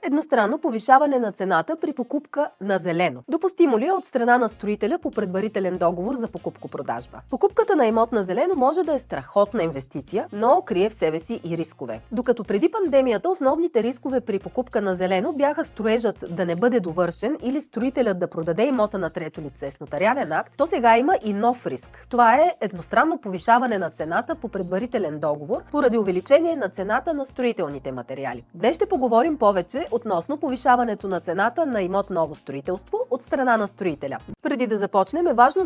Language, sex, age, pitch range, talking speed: Bulgarian, female, 30-49, 185-290 Hz, 175 wpm